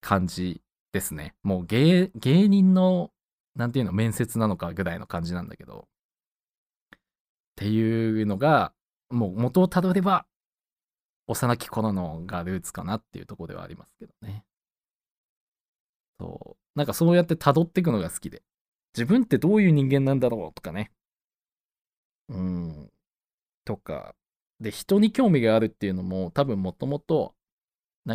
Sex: male